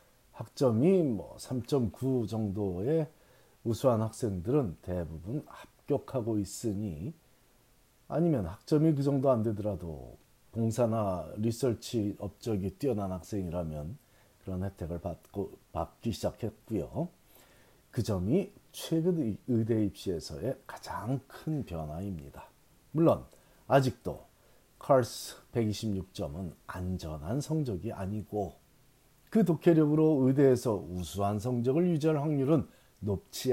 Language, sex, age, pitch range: Korean, male, 40-59, 100-140 Hz